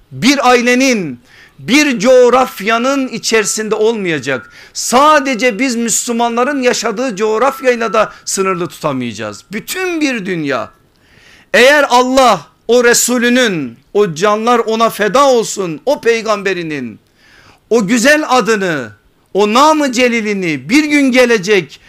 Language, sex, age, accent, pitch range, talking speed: Turkish, male, 50-69, native, 195-260 Hz, 100 wpm